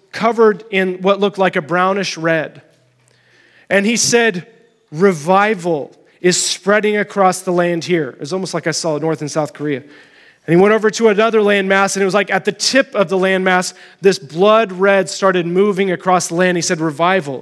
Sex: male